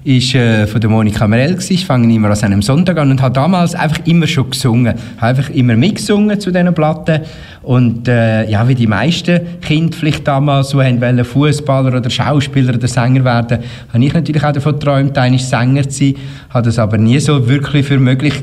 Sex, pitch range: male, 120-155 Hz